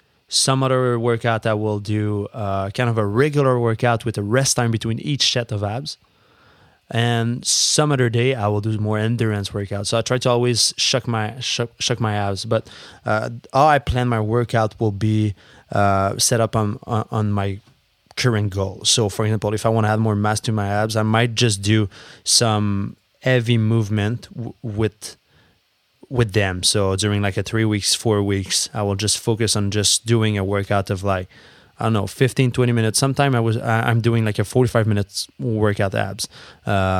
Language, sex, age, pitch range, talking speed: English, male, 20-39, 105-120 Hz, 195 wpm